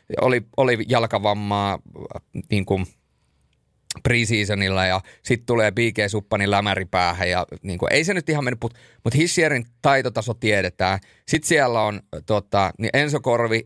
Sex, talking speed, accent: male, 125 wpm, native